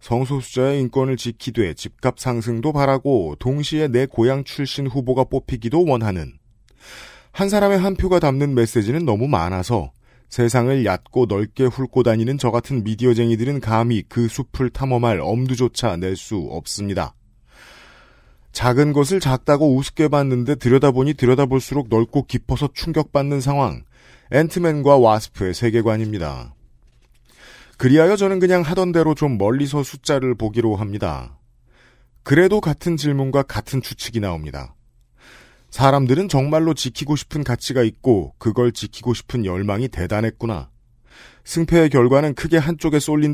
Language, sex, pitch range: Korean, male, 115-145 Hz